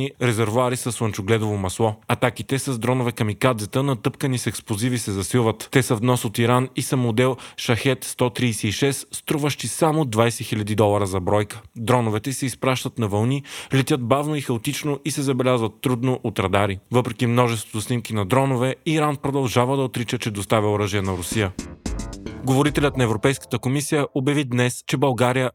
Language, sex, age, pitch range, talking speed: Bulgarian, male, 30-49, 115-140 Hz, 155 wpm